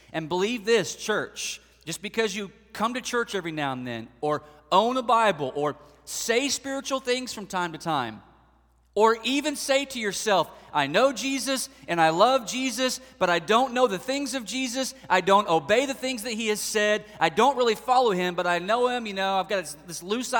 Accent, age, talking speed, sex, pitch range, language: American, 30-49, 205 wpm, male, 155-235 Hz, English